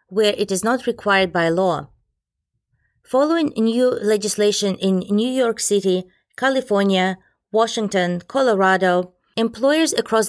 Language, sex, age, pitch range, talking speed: English, female, 30-49, 180-225 Hz, 110 wpm